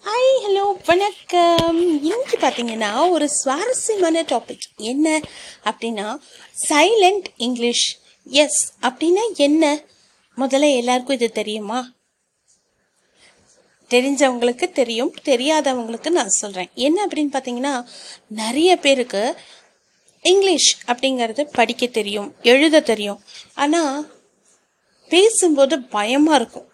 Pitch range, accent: 235-310 Hz, native